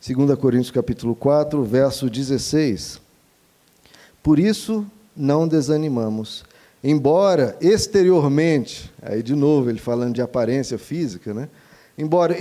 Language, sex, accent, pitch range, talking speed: Portuguese, male, Brazilian, 130-175 Hz, 105 wpm